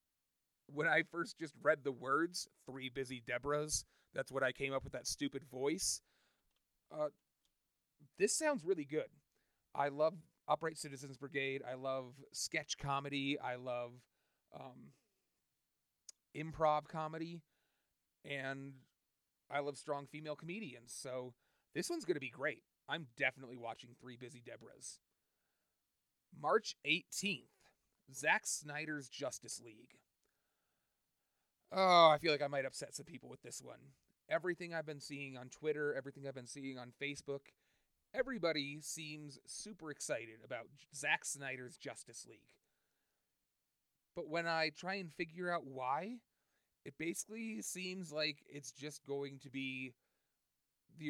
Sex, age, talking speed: male, 30-49, 135 wpm